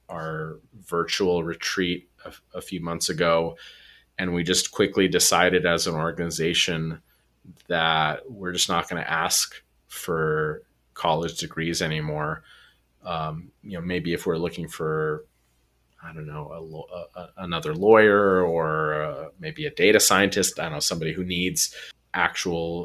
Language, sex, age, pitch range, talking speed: English, male, 30-49, 80-90 Hz, 145 wpm